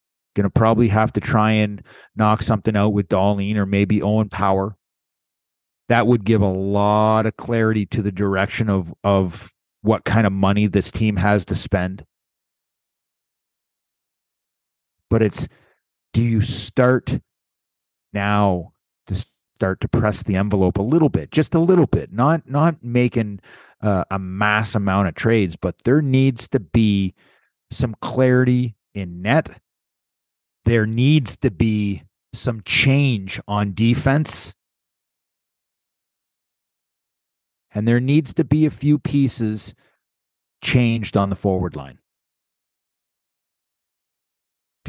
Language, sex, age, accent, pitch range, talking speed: English, male, 30-49, American, 95-115 Hz, 130 wpm